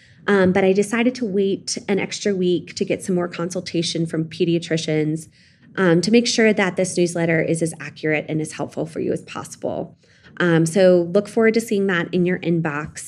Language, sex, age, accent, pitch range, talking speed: English, female, 20-39, American, 165-215 Hz, 195 wpm